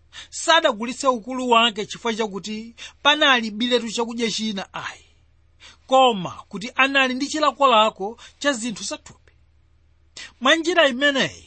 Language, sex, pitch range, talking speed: English, male, 165-260 Hz, 110 wpm